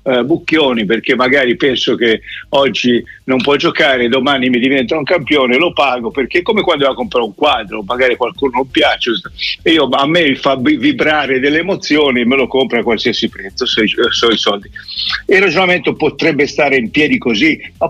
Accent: native